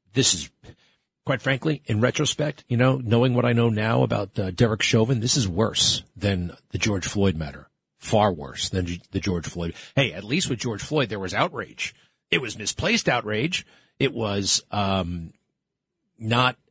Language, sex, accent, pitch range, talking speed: English, male, American, 100-145 Hz, 175 wpm